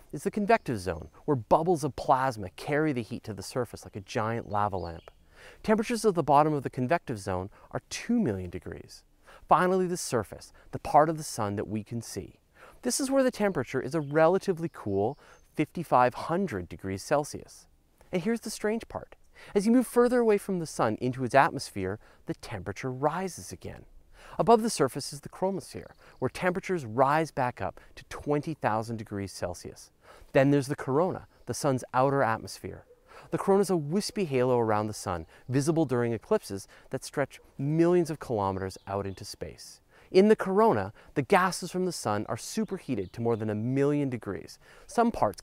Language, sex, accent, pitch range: English, male, American, 110-185 Hz